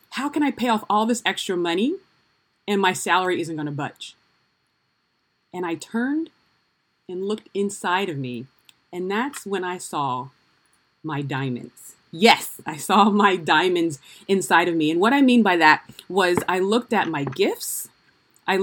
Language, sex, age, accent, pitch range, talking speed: English, female, 30-49, American, 175-225 Hz, 170 wpm